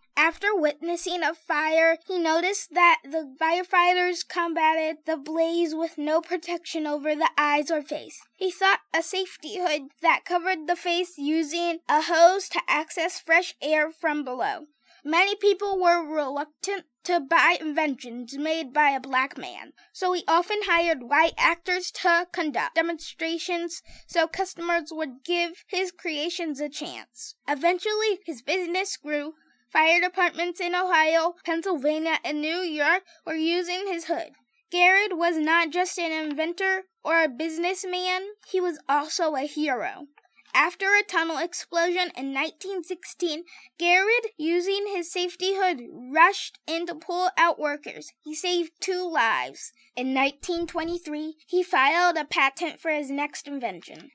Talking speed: 140 wpm